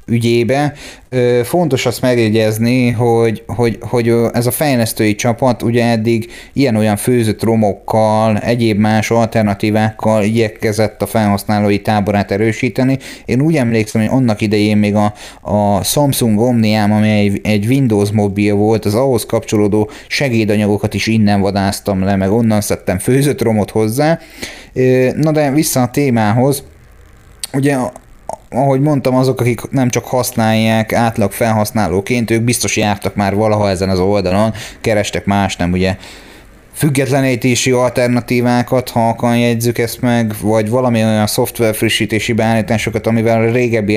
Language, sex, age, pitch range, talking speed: Hungarian, male, 30-49, 105-125 Hz, 130 wpm